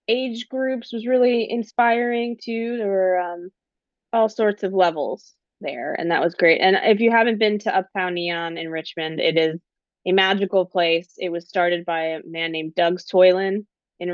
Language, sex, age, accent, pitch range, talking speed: English, female, 20-39, American, 165-205 Hz, 185 wpm